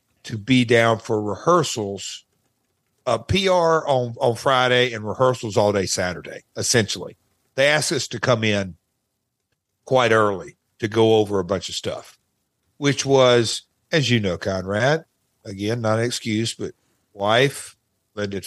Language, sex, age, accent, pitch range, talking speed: English, male, 50-69, American, 110-130 Hz, 145 wpm